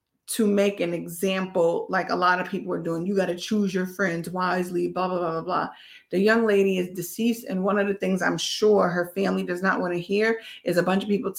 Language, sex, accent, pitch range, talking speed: English, female, American, 165-195 Hz, 235 wpm